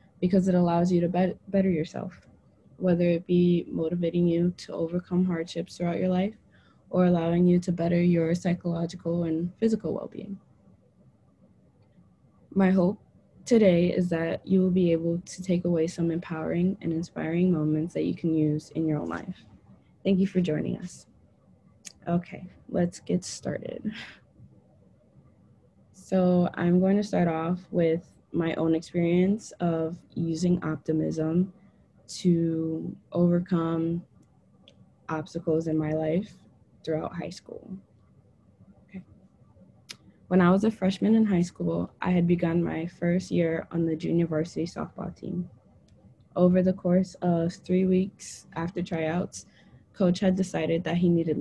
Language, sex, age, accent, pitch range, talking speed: English, female, 20-39, American, 165-185 Hz, 140 wpm